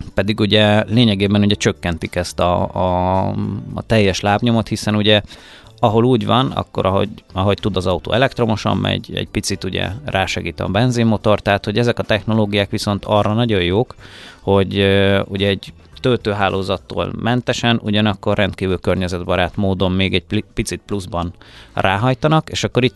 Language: Hungarian